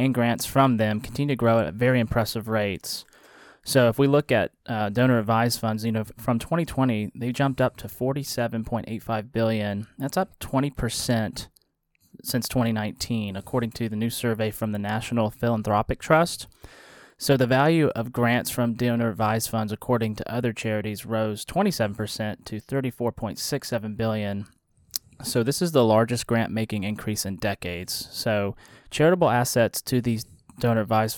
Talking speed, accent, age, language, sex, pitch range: 150 wpm, American, 30-49, English, male, 110-125 Hz